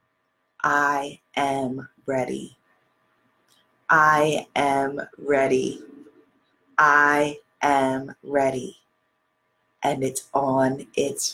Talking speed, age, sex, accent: 70 wpm, 30-49, female, American